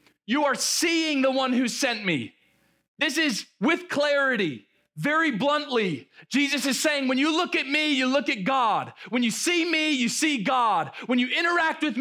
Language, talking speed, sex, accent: English, 185 wpm, male, American